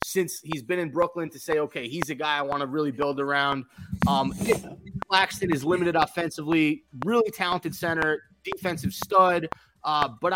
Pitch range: 145-185 Hz